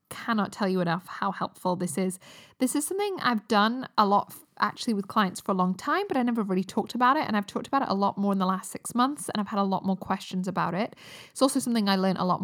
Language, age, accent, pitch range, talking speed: English, 10-29, British, 185-240 Hz, 280 wpm